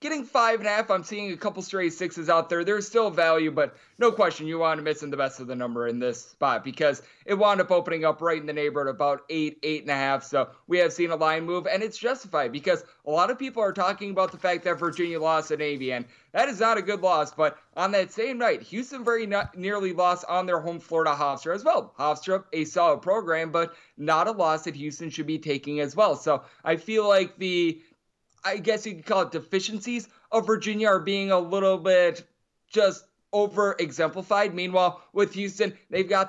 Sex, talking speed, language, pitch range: male, 230 wpm, English, 160-200 Hz